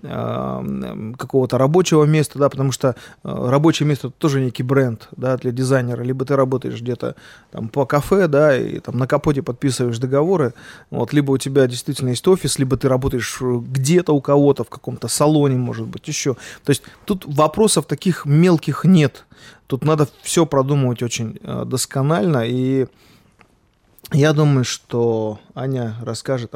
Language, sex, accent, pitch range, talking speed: Russian, male, native, 125-150 Hz, 150 wpm